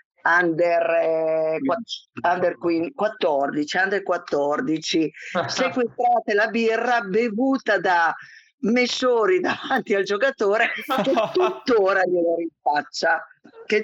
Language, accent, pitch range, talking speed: Italian, native, 160-210 Hz, 85 wpm